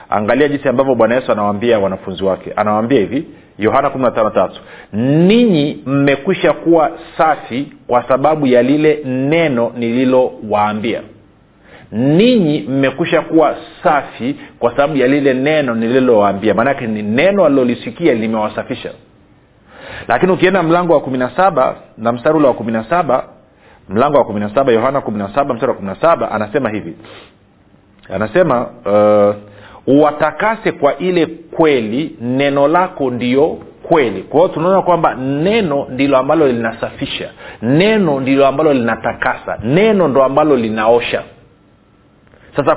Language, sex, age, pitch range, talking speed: Swahili, male, 40-59, 110-155 Hz, 115 wpm